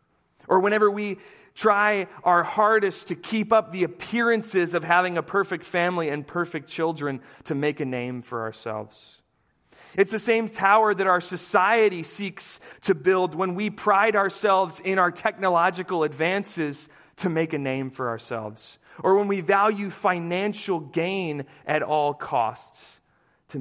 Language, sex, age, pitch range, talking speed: English, male, 30-49, 135-190 Hz, 150 wpm